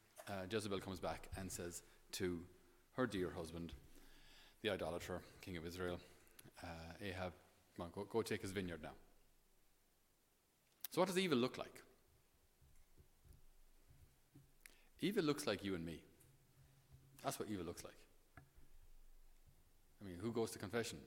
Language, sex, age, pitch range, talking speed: English, male, 40-59, 90-115 Hz, 135 wpm